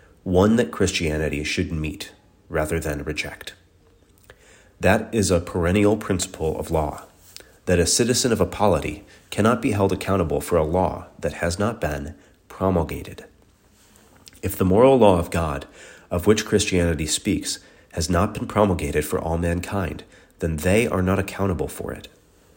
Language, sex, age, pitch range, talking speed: English, male, 30-49, 80-100 Hz, 150 wpm